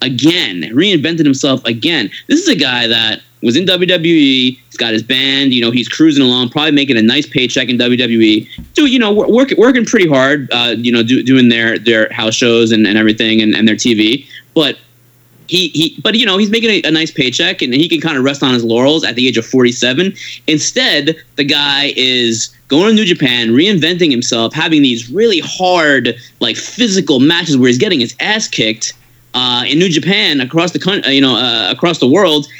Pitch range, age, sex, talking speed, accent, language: 120-160 Hz, 20-39, male, 205 wpm, American, English